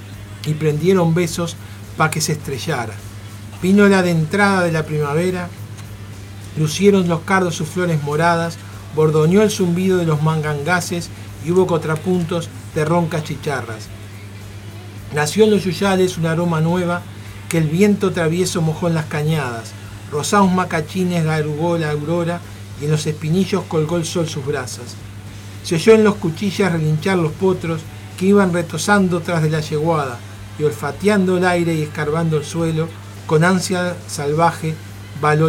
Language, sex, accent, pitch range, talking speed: Spanish, male, Argentinian, 140-180 Hz, 150 wpm